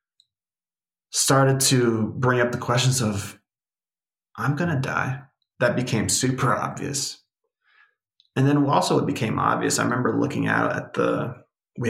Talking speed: 140 wpm